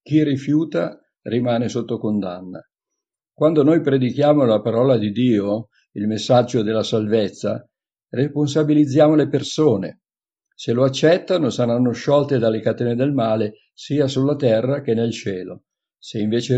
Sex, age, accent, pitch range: male, 50-69, native, 115-140 Hz